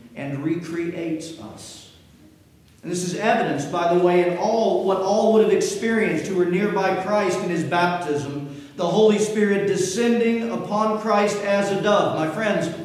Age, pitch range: 50-69, 150-190 Hz